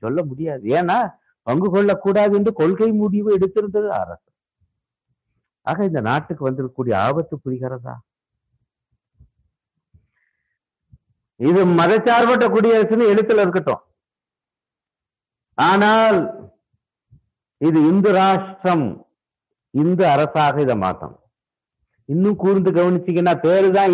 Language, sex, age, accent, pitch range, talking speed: Tamil, male, 50-69, native, 130-195 Hz, 65 wpm